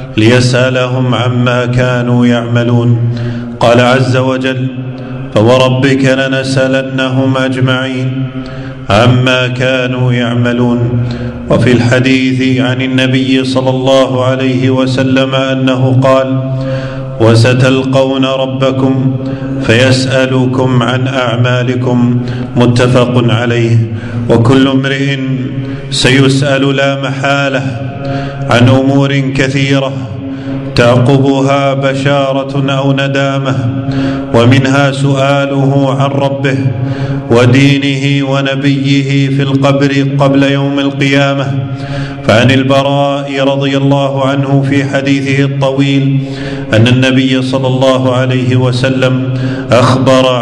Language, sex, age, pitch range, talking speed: Arabic, male, 40-59, 130-140 Hz, 80 wpm